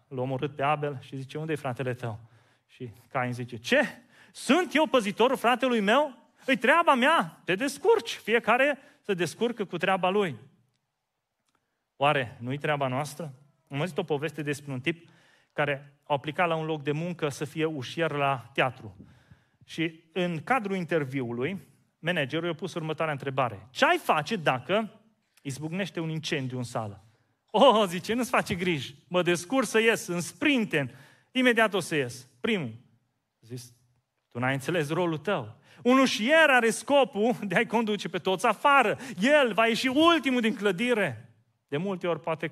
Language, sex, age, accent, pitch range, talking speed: Romanian, male, 30-49, native, 140-215 Hz, 160 wpm